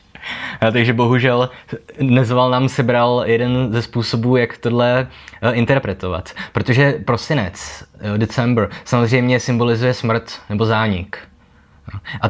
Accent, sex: native, male